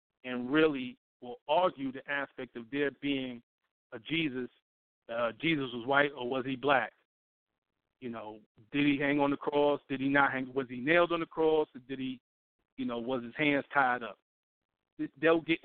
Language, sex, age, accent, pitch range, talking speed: English, male, 40-59, American, 125-155 Hz, 190 wpm